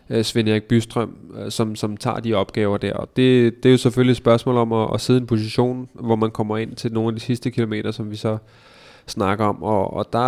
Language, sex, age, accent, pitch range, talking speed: Danish, male, 20-39, native, 105-120 Hz, 245 wpm